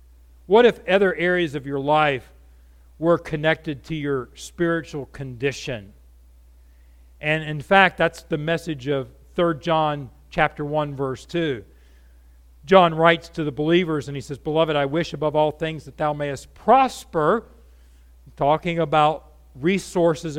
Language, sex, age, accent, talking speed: English, male, 50-69, American, 135 wpm